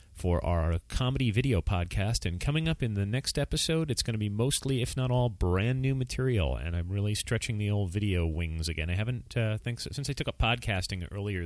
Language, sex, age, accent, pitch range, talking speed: English, male, 30-49, American, 85-110 Hz, 225 wpm